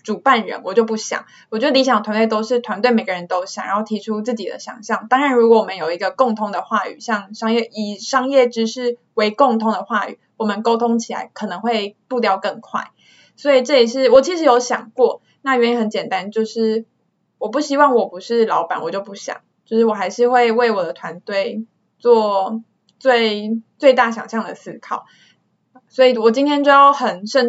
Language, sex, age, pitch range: Chinese, female, 20-39, 215-260 Hz